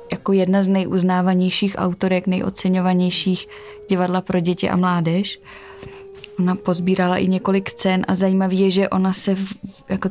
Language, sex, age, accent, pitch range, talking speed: Czech, female, 20-39, native, 185-200 Hz, 135 wpm